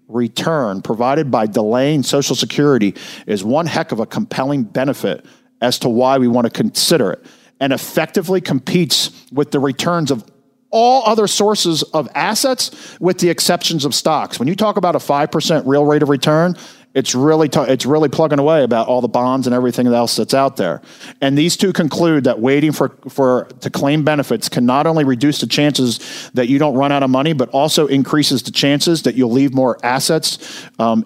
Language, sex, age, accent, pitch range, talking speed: English, male, 50-69, American, 135-175 Hz, 195 wpm